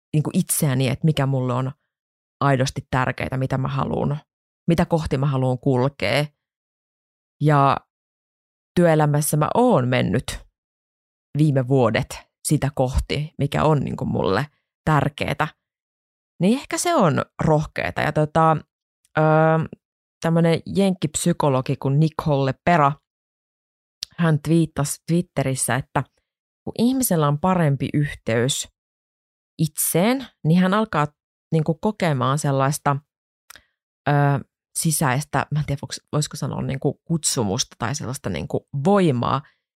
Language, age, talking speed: Finnish, 20-39, 105 wpm